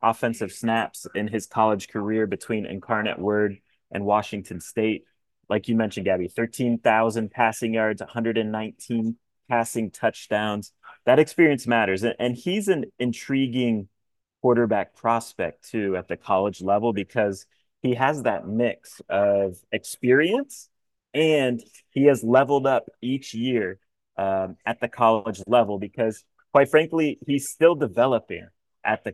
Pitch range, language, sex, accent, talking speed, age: 105-125 Hz, English, male, American, 130 wpm, 30-49